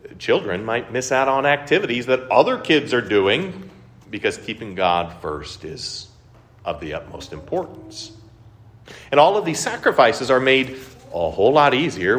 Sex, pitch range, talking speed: male, 100-130 Hz, 155 wpm